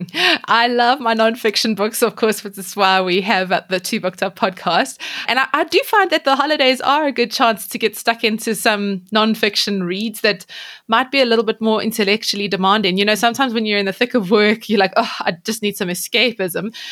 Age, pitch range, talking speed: 20-39, 195-240 Hz, 225 wpm